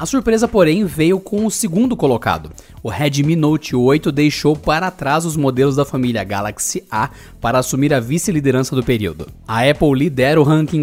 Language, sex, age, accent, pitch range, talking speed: Portuguese, male, 20-39, Brazilian, 125-160 Hz, 175 wpm